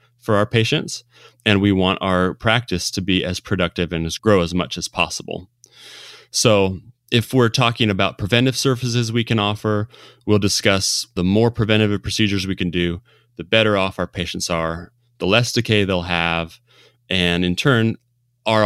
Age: 30-49